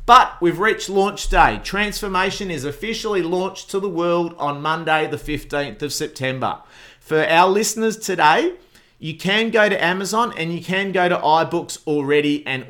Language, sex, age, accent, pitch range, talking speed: English, male, 40-59, Australian, 130-175 Hz, 165 wpm